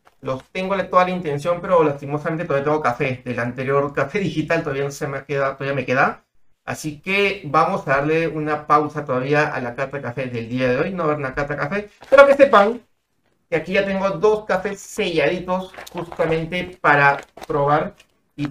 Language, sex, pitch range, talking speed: Spanish, male, 135-180 Hz, 190 wpm